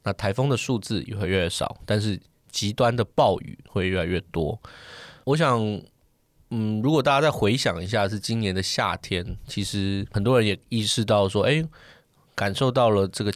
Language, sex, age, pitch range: Chinese, male, 20-39, 100-125 Hz